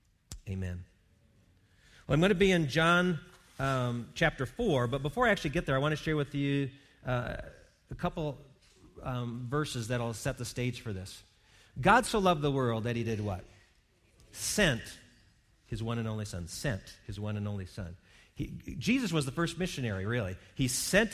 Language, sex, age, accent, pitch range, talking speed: English, male, 40-59, American, 115-170 Hz, 180 wpm